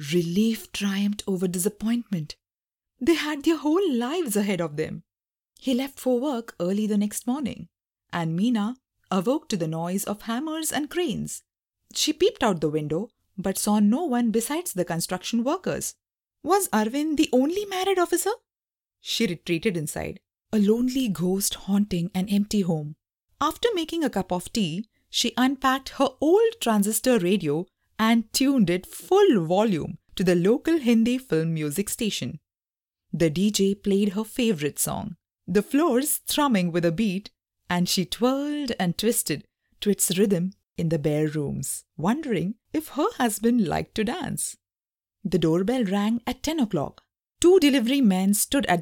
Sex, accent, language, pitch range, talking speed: female, Indian, English, 180-260 Hz, 155 wpm